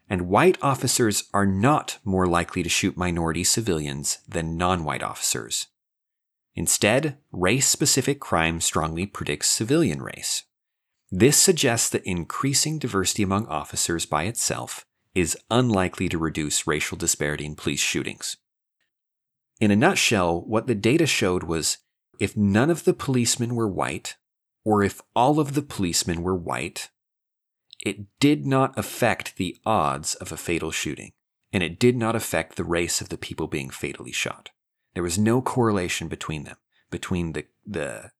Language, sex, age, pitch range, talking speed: English, male, 30-49, 85-115 Hz, 150 wpm